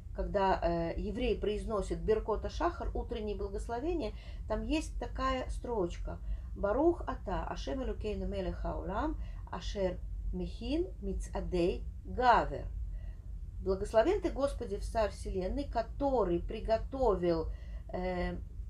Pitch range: 185-260 Hz